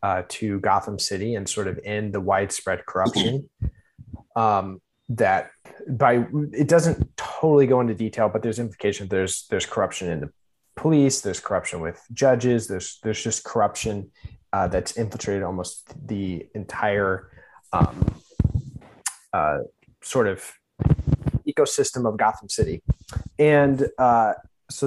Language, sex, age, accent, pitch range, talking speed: English, male, 20-39, American, 100-120 Hz, 130 wpm